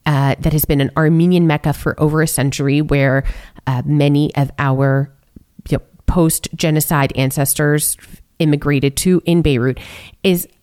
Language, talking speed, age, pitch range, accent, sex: English, 130 wpm, 30-49, 145-180 Hz, American, female